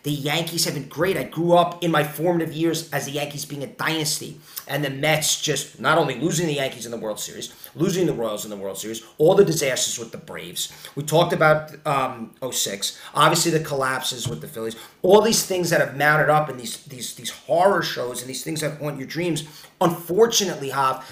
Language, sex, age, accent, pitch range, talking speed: English, male, 30-49, American, 150-180 Hz, 220 wpm